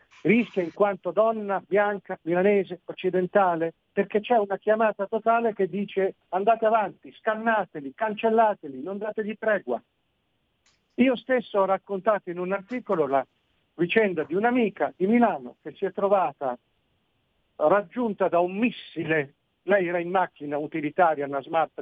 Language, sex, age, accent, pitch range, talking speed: Italian, male, 50-69, native, 160-200 Hz, 140 wpm